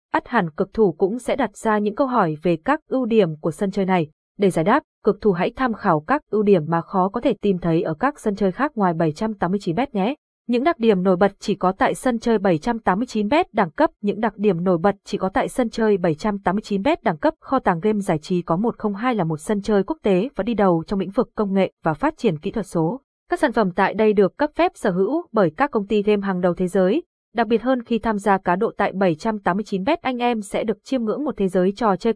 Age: 20-39